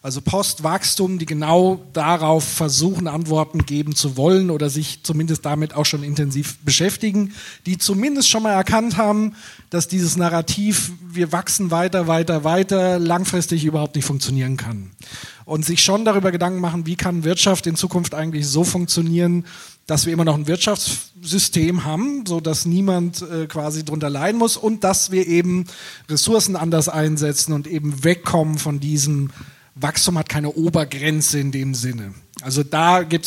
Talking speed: 155 wpm